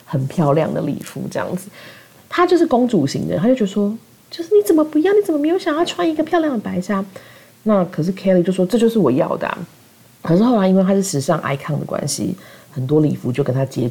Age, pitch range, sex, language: 40-59, 150-205 Hz, female, Chinese